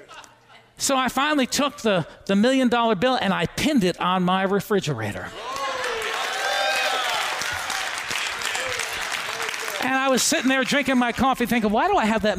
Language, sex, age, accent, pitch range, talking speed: English, male, 40-59, American, 240-315 Hz, 140 wpm